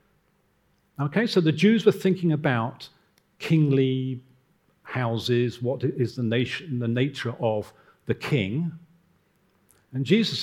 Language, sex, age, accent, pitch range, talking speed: English, male, 50-69, British, 120-165 Hz, 115 wpm